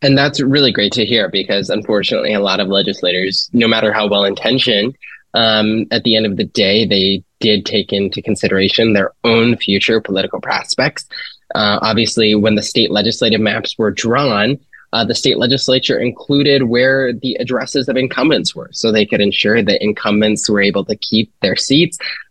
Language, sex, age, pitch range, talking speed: English, male, 20-39, 105-130 Hz, 180 wpm